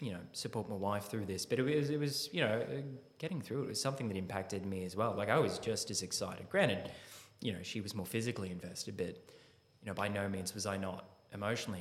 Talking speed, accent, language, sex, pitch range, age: 245 wpm, Australian, English, male, 95-125 Hz, 20-39